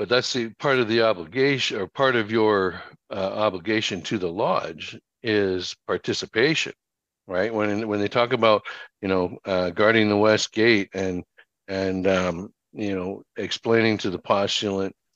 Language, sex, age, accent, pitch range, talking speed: English, male, 60-79, American, 95-115 Hz, 160 wpm